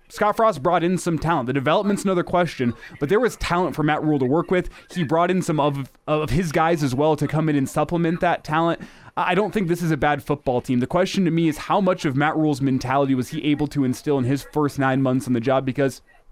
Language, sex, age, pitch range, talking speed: English, male, 20-39, 140-175 Hz, 260 wpm